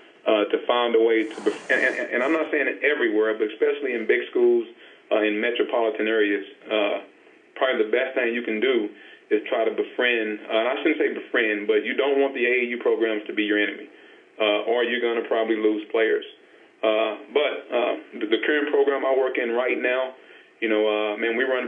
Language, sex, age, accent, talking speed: English, male, 40-59, American, 220 wpm